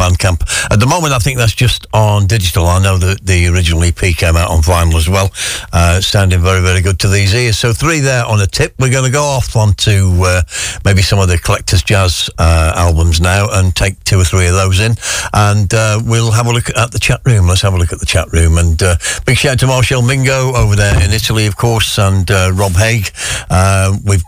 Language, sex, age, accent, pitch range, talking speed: English, male, 60-79, British, 90-115 Hz, 245 wpm